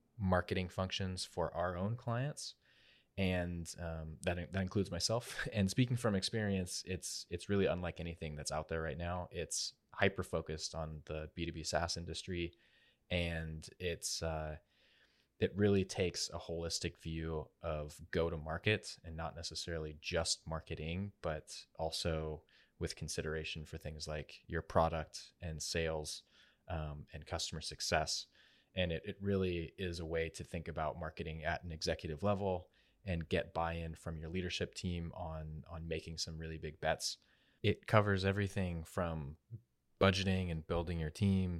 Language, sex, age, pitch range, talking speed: English, male, 20-39, 80-90 Hz, 150 wpm